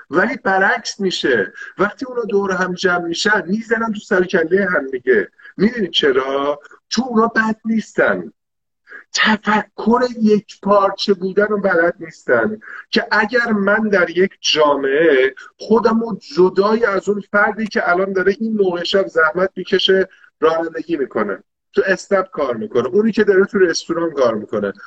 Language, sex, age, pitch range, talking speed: Persian, male, 50-69, 175-215 Hz, 140 wpm